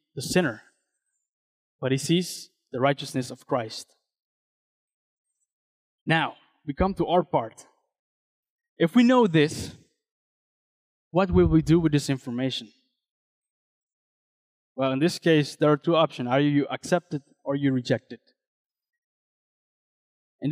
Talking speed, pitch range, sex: 125 wpm, 140-185 Hz, male